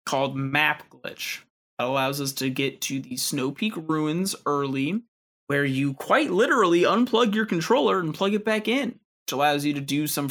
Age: 20-39